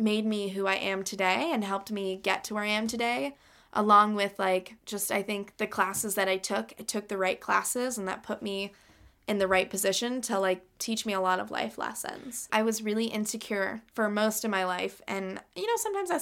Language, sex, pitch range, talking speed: English, female, 195-230 Hz, 230 wpm